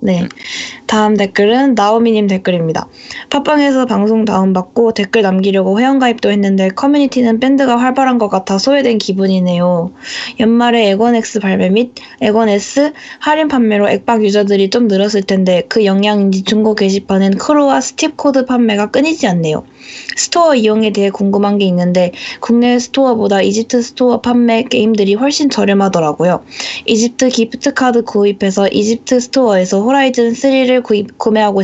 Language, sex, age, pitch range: Korean, female, 20-39, 195-245 Hz